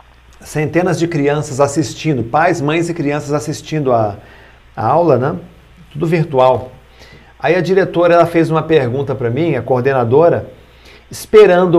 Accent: Brazilian